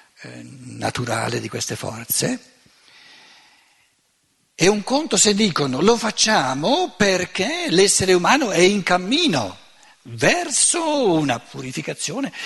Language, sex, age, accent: Italian, male, 60-79, native